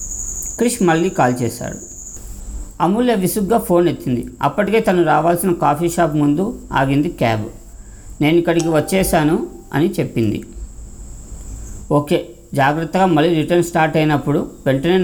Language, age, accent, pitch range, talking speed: Telugu, 50-69, native, 130-175 Hz, 110 wpm